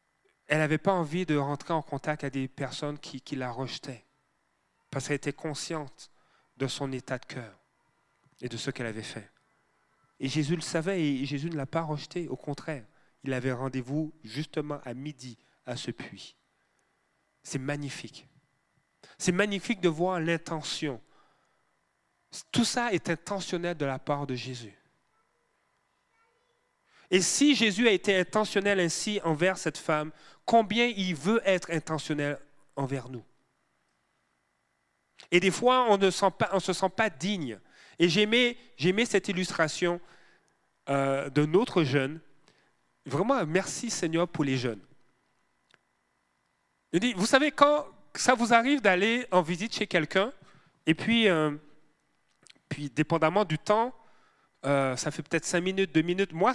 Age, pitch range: 30-49, 140-190 Hz